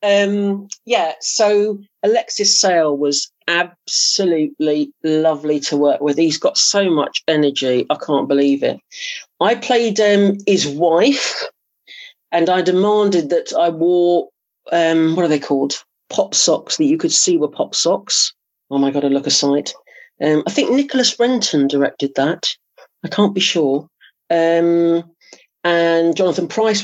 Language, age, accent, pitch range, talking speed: English, 40-59, British, 145-200 Hz, 150 wpm